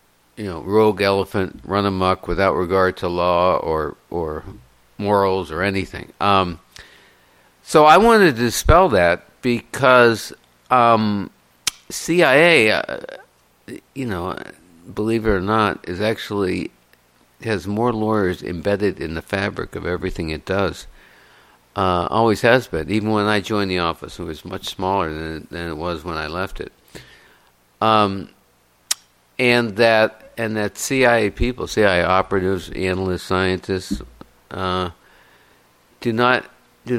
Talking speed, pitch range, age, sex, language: 135 wpm, 90-110 Hz, 50-69, male, English